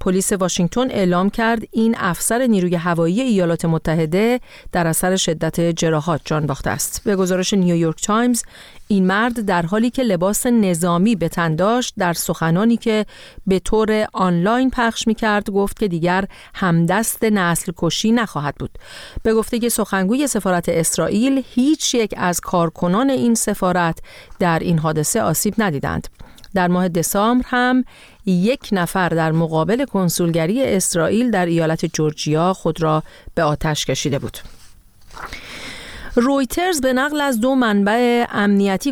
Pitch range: 170-225 Hz